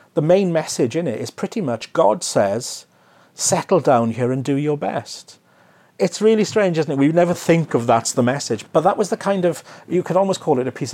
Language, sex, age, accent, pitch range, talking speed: English, male, 40-59, British, 115-170 Hz, 230 wpm